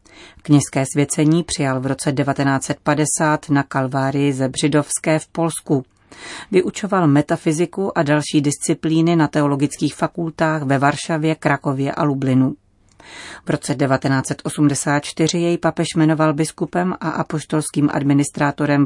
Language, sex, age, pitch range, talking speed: Czech, female, 30-49, 140-165 Hz, 110 wpm